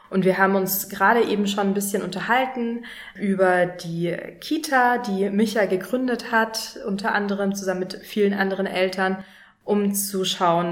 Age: 20-39